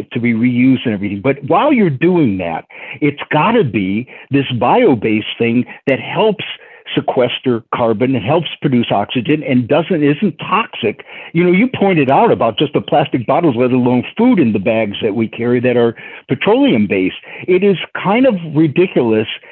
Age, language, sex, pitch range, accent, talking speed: 50-69, English, male, 120-175 Hz, American, 170 wpm